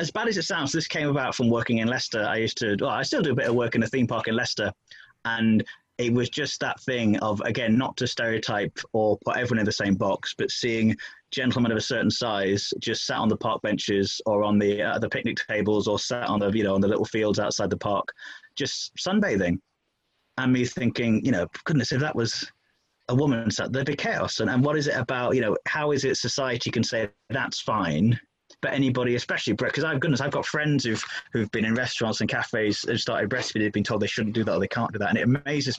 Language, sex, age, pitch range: English, male, 20-39, 105-130 Hz